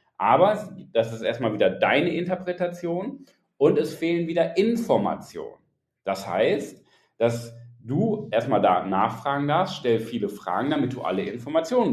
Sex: male